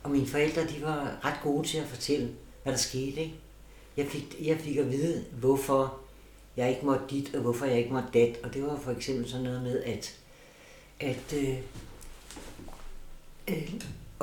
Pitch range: 130-155 Hz